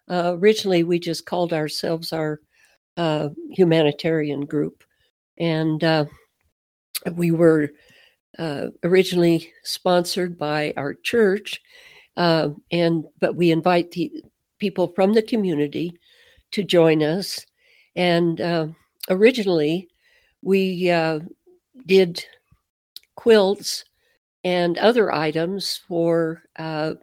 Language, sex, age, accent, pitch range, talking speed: English, female, 60-79, American, 160-190 Hz, 100 wpm